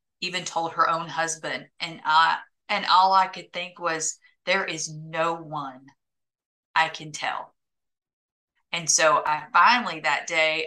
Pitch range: 155-205 Hz